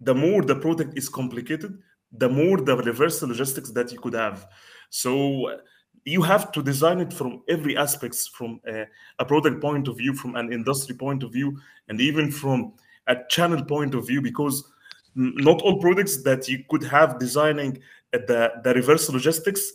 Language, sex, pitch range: English, male, 125-155 Hz